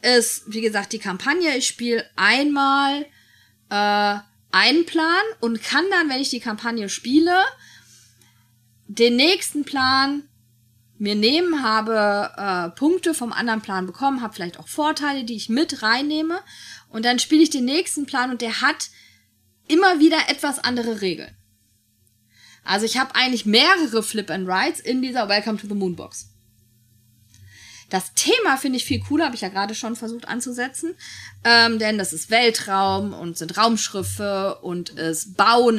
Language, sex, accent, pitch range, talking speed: German, female, German, 175-265 Hz, 155 wpm